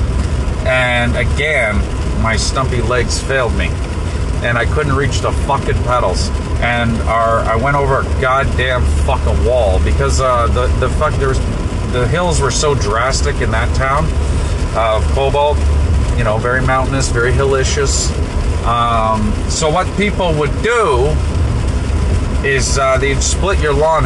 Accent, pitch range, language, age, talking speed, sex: American, 75-100 Hz, English, 40-59, 145 wpm, male